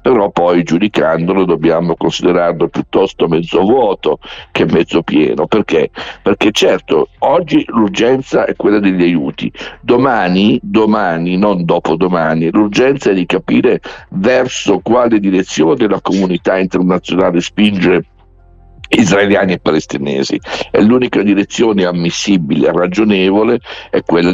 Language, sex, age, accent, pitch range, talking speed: Italian, male, 60-79, native, 85-100 Hz, 115 wpm